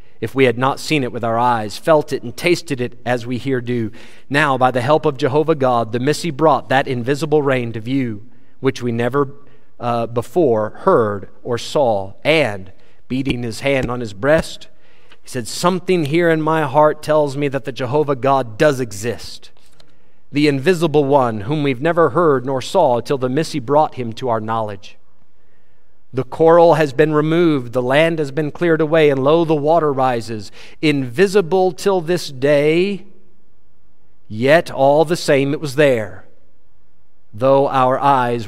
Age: 40-59